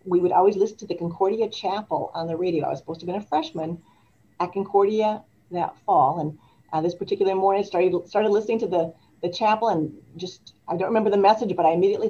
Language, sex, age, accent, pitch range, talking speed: English, female, 50-69, American, 145-195 Hz, 225 wpm